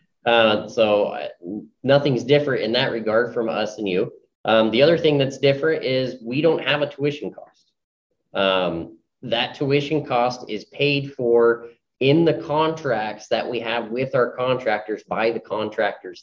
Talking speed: 160 wpm